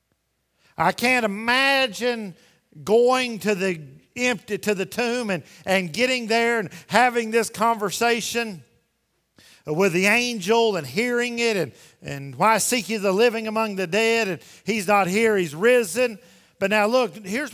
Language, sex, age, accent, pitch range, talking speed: English, male, 50-69, American, 135-225 Hz, 150 wpm